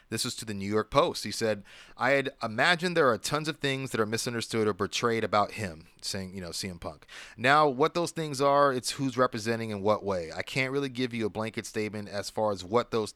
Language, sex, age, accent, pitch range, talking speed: English, male, 30-49, American, 105-125 Hz, 240 wpm